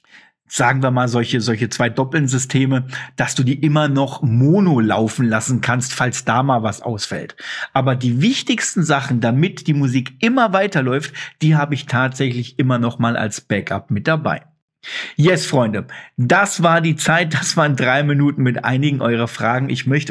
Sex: male